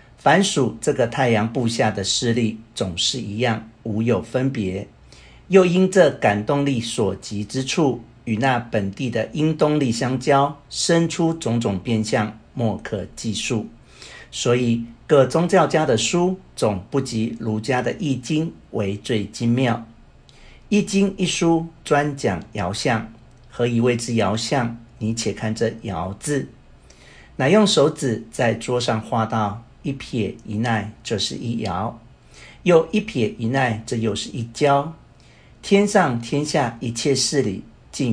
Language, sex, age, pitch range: Chinese, male, 50-69, 110-140 Hz